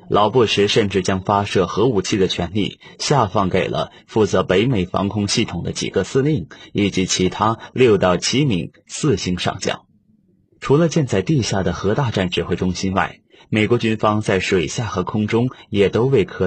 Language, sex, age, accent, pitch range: Chinese, male, 30-49, native, 90-110 Hz